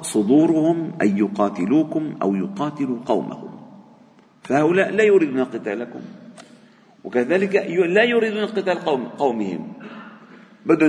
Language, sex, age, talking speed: Arabic, male, 50-69, 95 wpm